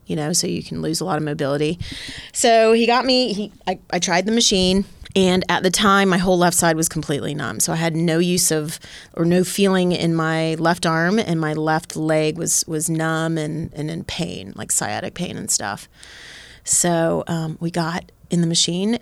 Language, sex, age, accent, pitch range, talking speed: English, female, 30-49, American, 160-185 Hz, 210 wpm